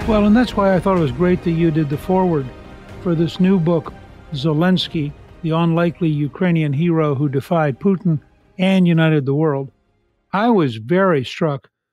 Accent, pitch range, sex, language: American, 150-180 Hz, male, English